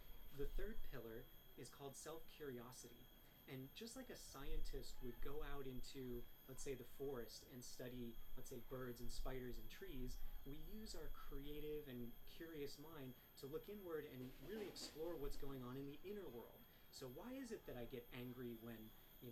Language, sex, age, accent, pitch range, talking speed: English, male, 30-49, American, 125-150 Hz, 180 wpm